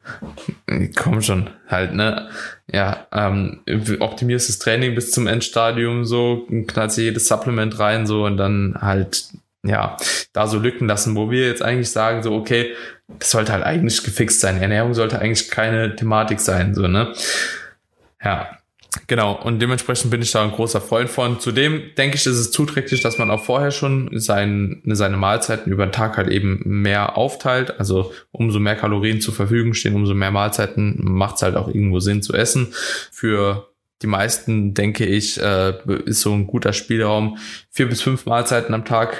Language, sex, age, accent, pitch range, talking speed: German, male, 20-39, German, 100-120 Hz, 170 wpm